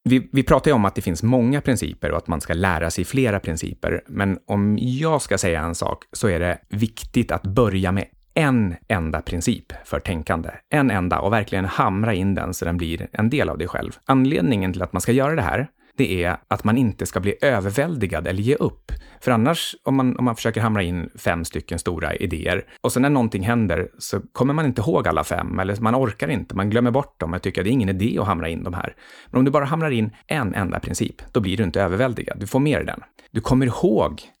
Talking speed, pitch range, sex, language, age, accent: 240 wpm, 90-120 Hz, male, Swedish, 30-49, native